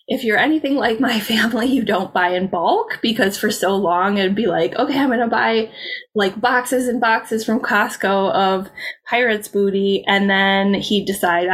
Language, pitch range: English, 185-225 Hz